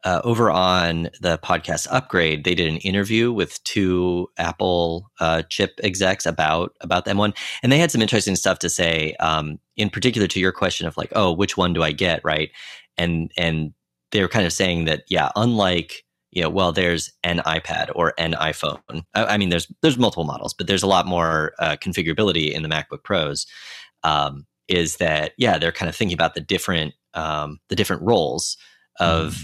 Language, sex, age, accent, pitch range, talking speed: English, male, 30-49, American, 80-100 Hz, 195 wpm